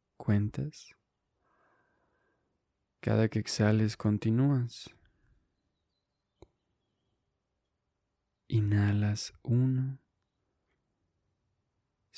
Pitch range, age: 95-115 Hz, 20-39